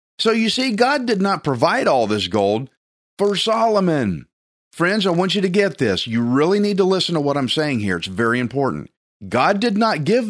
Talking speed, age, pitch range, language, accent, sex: 210 wpm, 40-59, 130-195 Hz, English, American, male